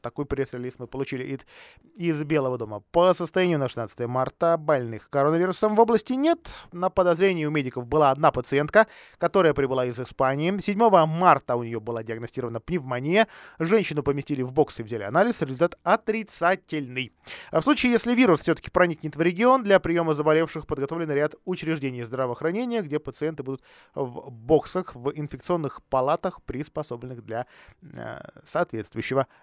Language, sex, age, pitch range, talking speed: Russian, male, 20-39, 130-180 Hz, 145 wpm